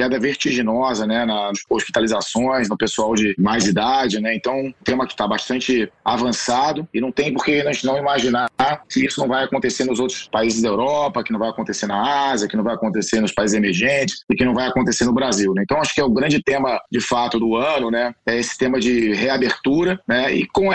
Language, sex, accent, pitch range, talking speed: Portuguese, male, Brazilian, 115-135 Hz, 225 wpm